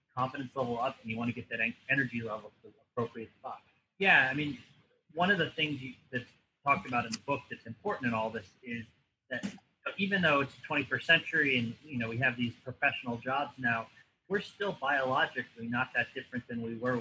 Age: 30-49